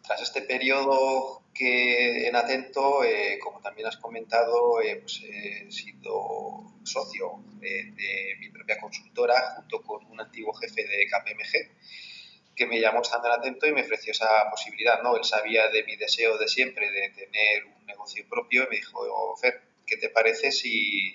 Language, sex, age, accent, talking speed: Spanish, male, 30-49, Spanish, 165 wpm